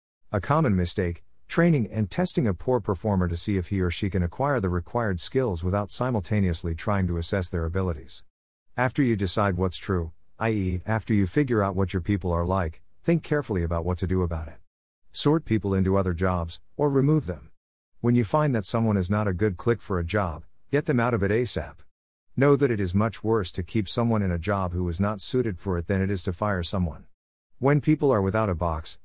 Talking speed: 220 wpm